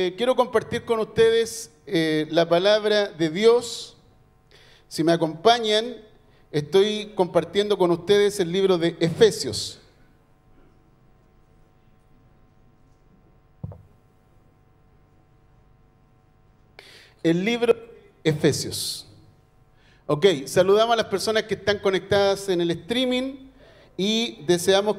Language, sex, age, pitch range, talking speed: Spanish, male, 50-69, 150-220 Hz, 85 wpm